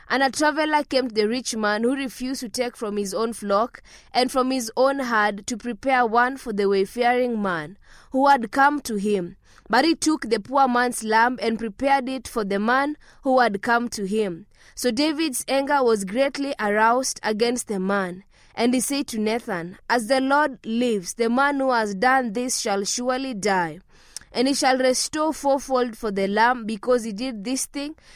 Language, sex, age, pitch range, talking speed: English, female, 20-39, 215-260 Hz, 195 wpm